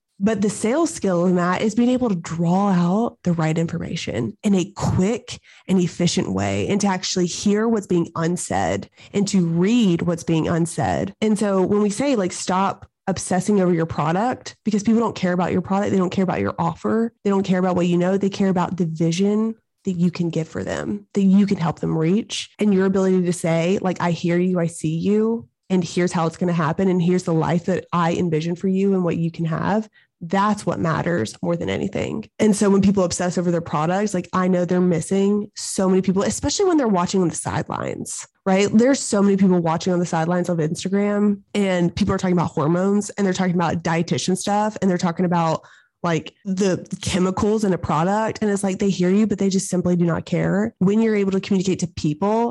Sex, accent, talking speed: female, American, 225 wpm